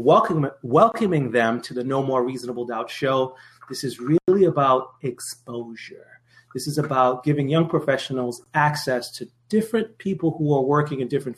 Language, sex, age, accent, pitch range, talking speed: English, male, 30-49, American, 125-160 Hz, 160 wpm